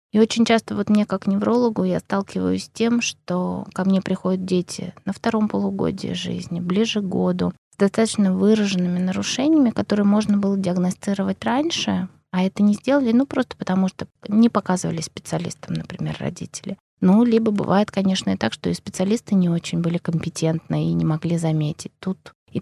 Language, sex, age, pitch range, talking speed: Russian, female, 20-39, 180-220 Hz, 170 wpm